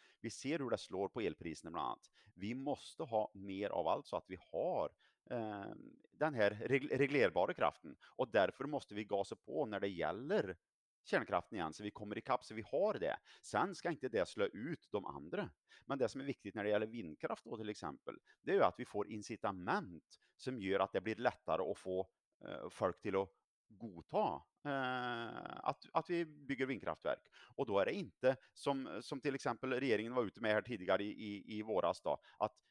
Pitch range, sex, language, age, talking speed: 100-135 Hz, male, Swedish, 30-49, 200 wpm